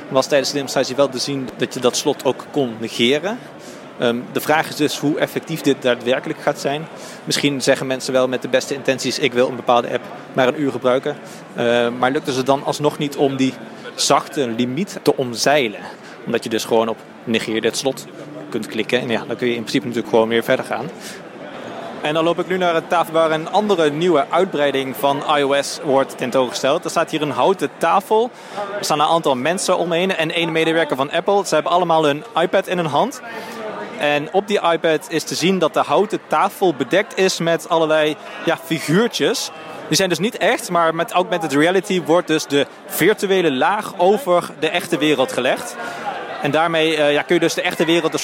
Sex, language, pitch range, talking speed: male, Dutch, 130-170 Hz, 200 wpm